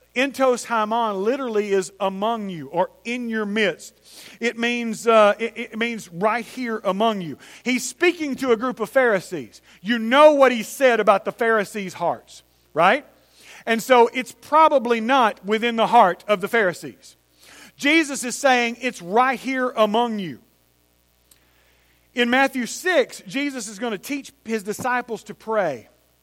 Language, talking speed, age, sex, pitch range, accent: English, 150 wpm, 40-59, male, 195-245 Hz, American